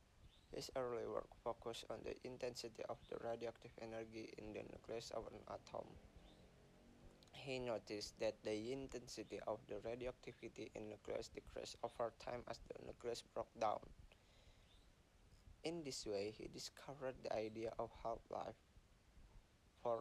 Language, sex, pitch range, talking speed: English, male, 110-120 Hz, 140 wpm